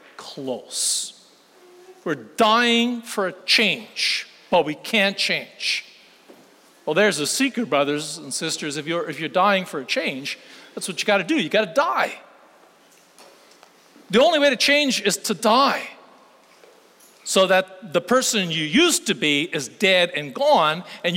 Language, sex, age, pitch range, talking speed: English, male, 40-59, 155-225 Hz, 160 wpm